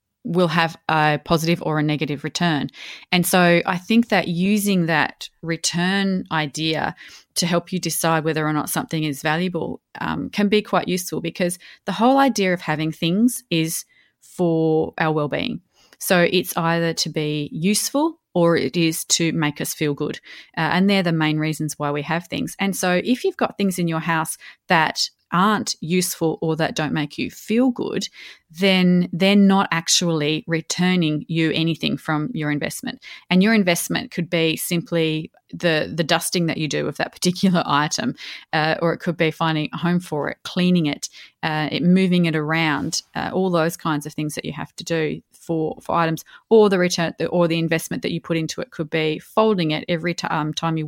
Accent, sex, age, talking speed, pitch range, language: Australian, female, 30-49, 195 wpm, 155-180 Hz, English